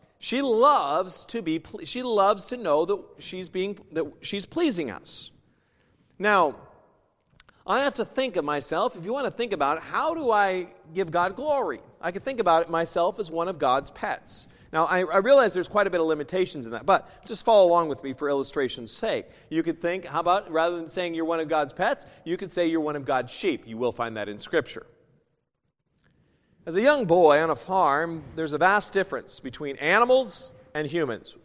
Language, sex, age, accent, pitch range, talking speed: English, male, 40-59, American, 160-225 Hz, 210 wpm